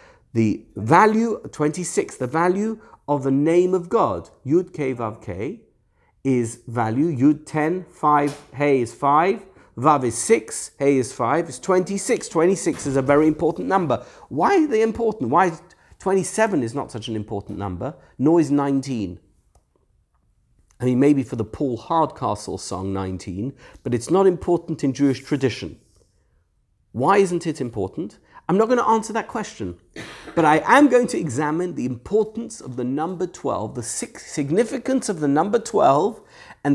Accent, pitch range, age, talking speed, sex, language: British, 130-210 Hz, 50-69, 160 wpm, male, English